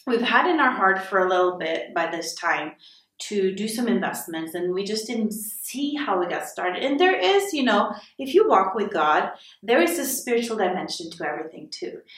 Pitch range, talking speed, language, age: 180-225 Hz, 210 wpm, English, 30-49